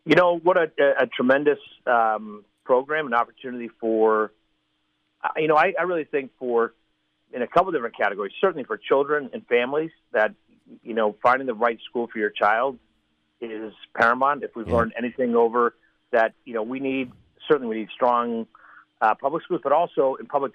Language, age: English, 50-69